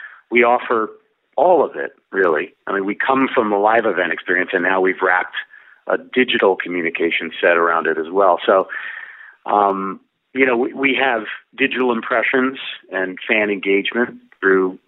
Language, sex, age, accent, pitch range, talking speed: English, male, 50-69, American, 100-135 Hz, 160 wpm